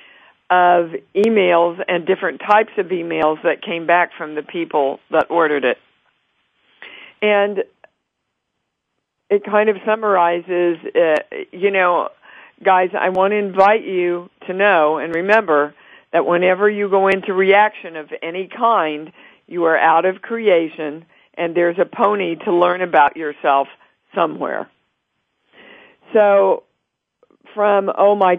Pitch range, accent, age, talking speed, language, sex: 165-200 Hz, American, 50-69, 130 wpm, English, female